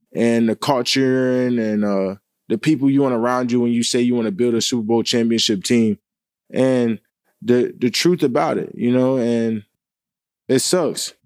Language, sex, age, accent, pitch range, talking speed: English, male, 20-39, American, 115-130 Hz, 180 wpm